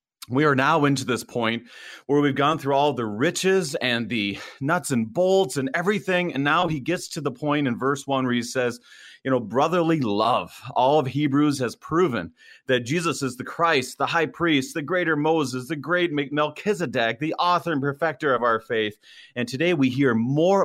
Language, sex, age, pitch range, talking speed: English, male, 30-49, 115-150 Hz, 200 wpm